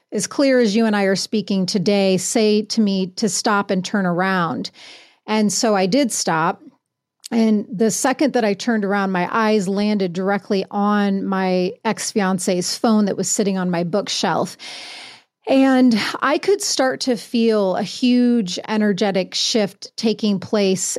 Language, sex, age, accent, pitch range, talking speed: English, female, 30-49, American, 195-225 Hz, 155 wpm